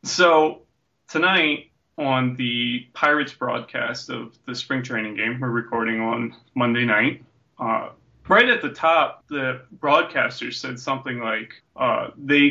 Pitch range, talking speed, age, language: 120-145 Hz, 135 wpm, 20-39, English